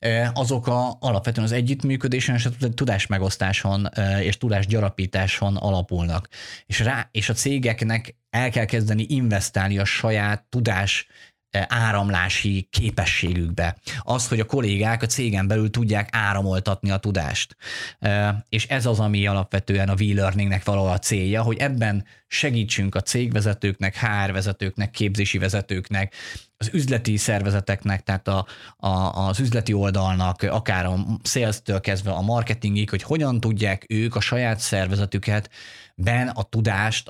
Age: 20-39